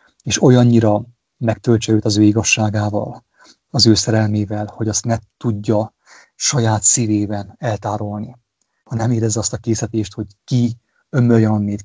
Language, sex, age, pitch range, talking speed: English, male, 30-49, 105-120 Hz, 125 wpm